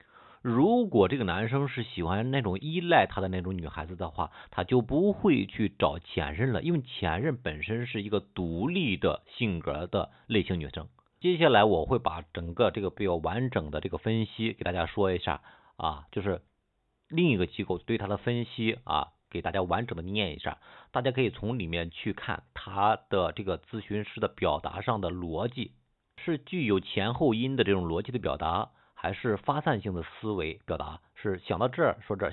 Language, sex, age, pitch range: Chinese, male, 50-69, 85-120 Hz